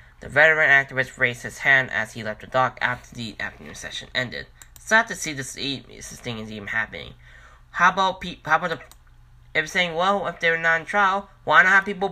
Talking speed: 225 wpm